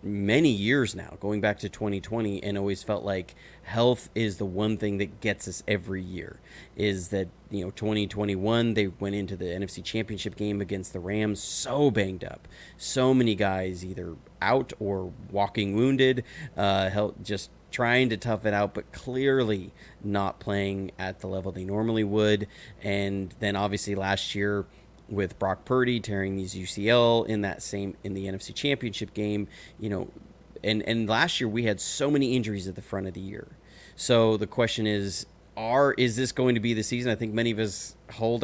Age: 30-49